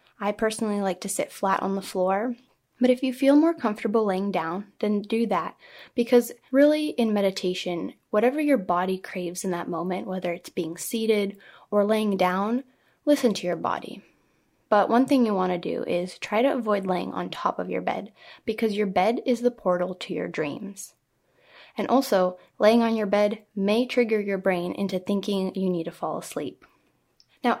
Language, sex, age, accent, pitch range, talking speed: English, female, 10-29, American, 185-240 Hz, 185 wpm